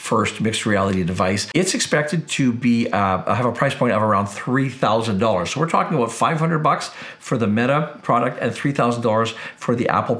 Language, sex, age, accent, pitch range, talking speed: English, male, 50-69, American, 110-135 Hz, 180 wpm